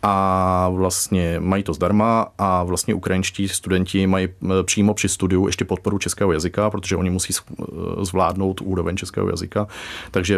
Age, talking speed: 30-49, 145 wpm